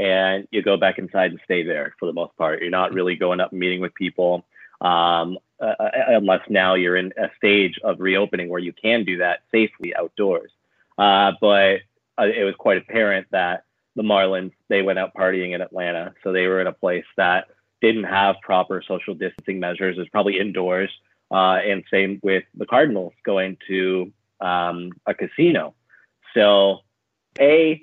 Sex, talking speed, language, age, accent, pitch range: male, 180 wpm, English, 30-49, American, 95-125 Hz